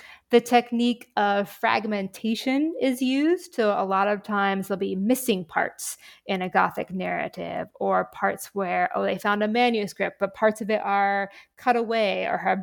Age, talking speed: 20-39, 170 wpm